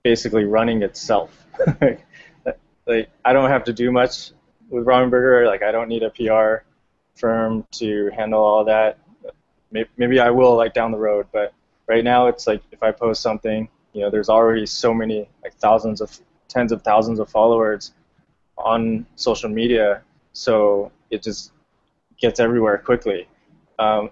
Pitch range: 110-120 Hz